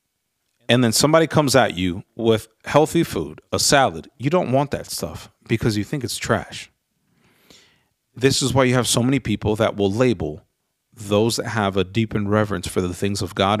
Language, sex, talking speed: English, male, 190 wpm